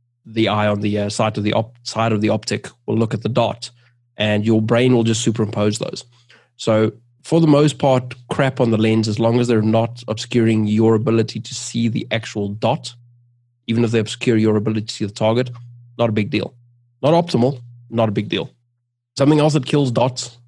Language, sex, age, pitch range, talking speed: English, male, 20-39, 110-120 Hz, 200 wpm